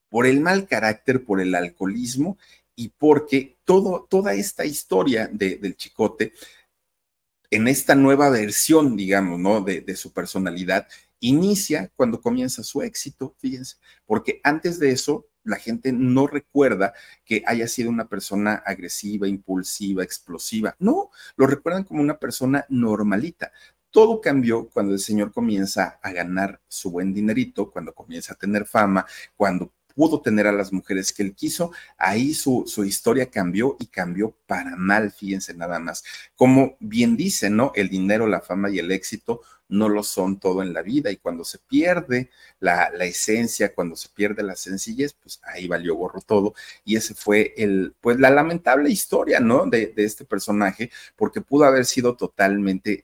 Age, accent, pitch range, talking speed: 40-59, Mexican, 100-145 Hz, 160 wpm